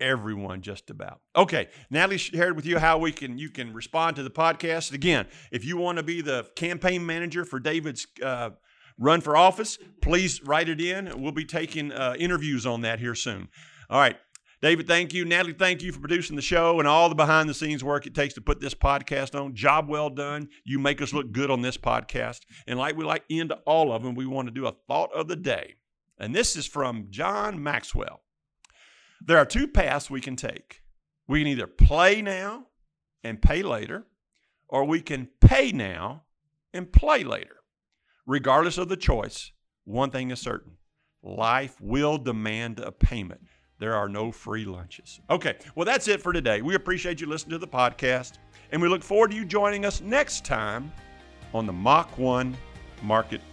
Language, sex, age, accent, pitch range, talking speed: English, male, 50-69, American, 125-170 Hz, 195 wpm